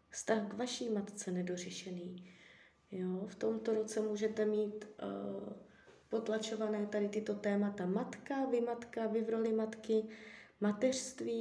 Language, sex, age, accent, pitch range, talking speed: Czech, female, 20-39, native, 195-230 Hz, 125 wpm